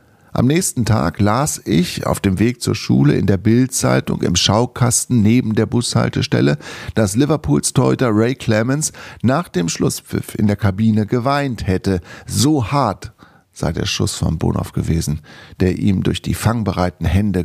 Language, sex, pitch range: German, male, 90-115 Hz